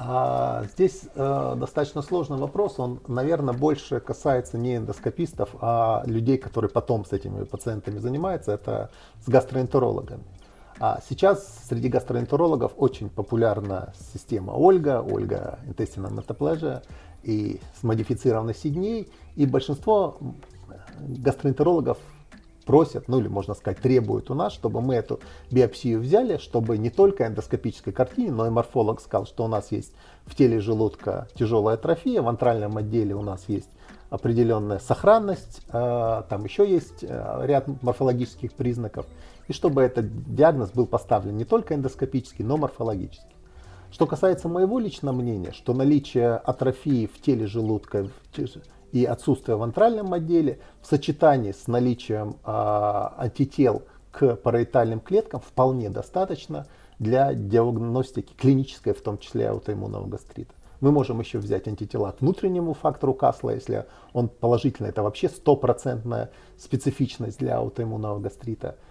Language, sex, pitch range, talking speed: Russian, male, 110-140 Hz, 130 wpm